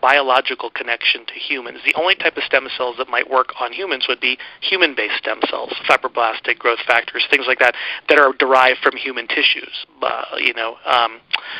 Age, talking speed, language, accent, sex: 30-49, 185 wpm, English, American, male